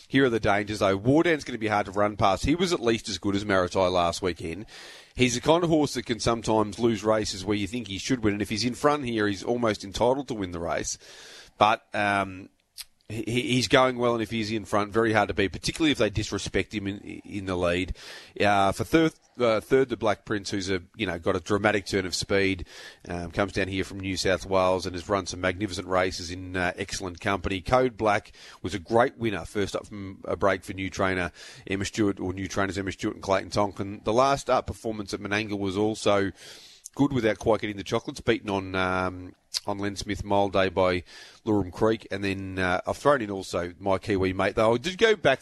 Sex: male